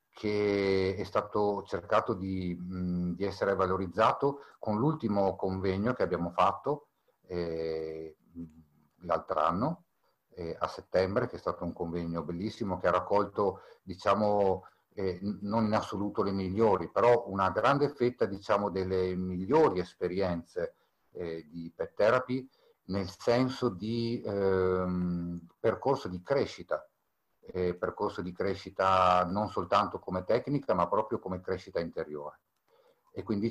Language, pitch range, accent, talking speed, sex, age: Italian, 85-105 Hz, native, 125 wpm, male, 50-69